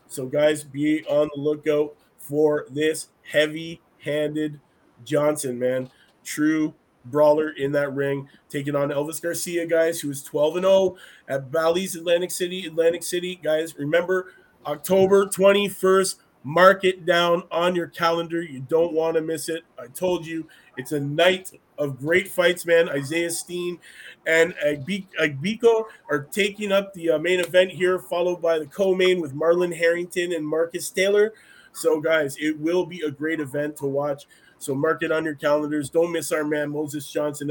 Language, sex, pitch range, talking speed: English, male, 150-180 Hz, 160 wpm